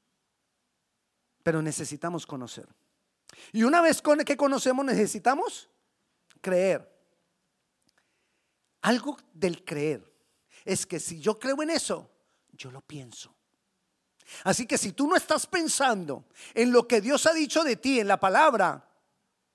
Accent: Mexican